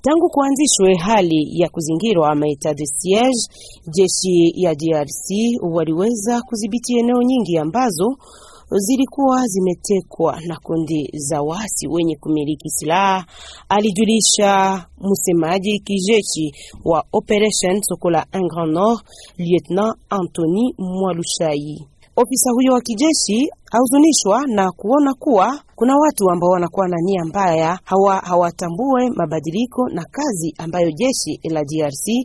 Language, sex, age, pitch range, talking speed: French, female, 40-59, 165-230 Hz, 110 wpm